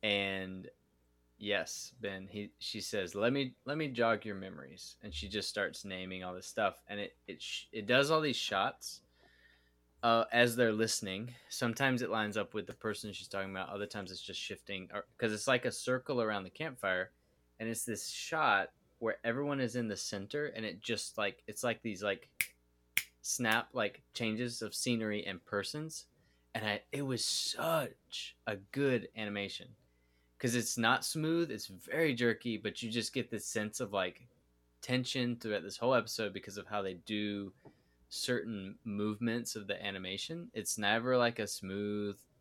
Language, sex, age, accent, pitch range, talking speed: English, male, 20-39, American, 95-120 Hz, 175 wpm